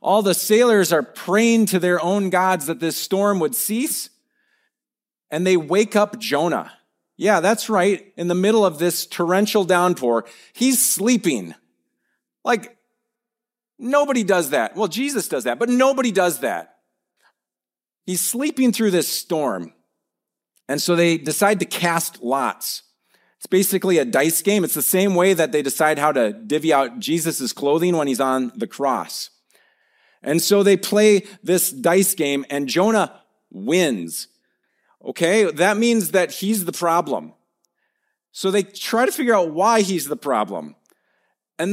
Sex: male